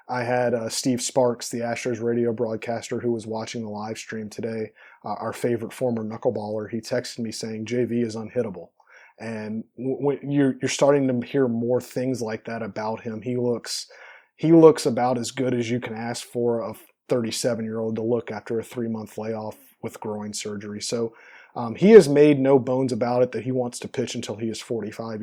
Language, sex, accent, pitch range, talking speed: English, male, American, 115-125 Hz, 200 wpm